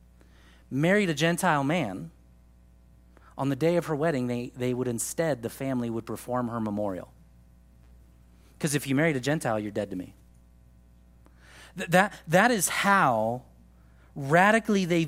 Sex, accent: male, American